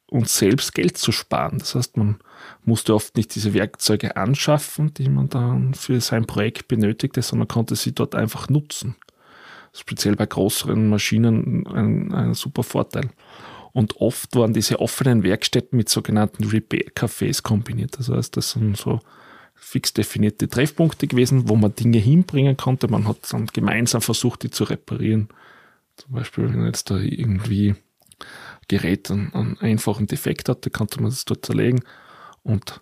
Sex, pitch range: male, 105-125 Hz